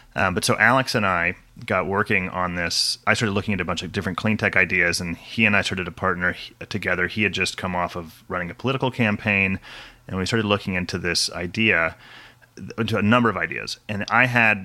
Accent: American